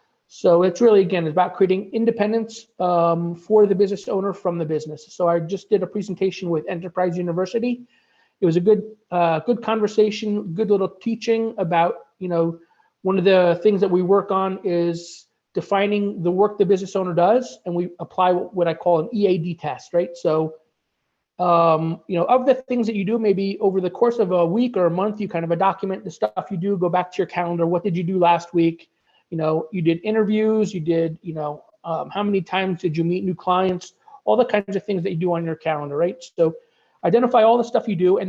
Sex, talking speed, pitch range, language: male, 220 wpm, 170-210 Hz, English